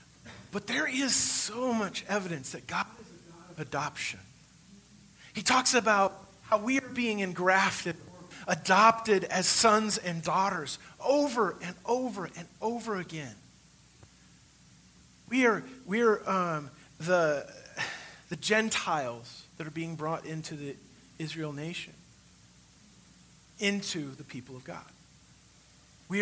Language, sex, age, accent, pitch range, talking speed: English, male, 40-59, American, 145-205 Hz, 125 wpm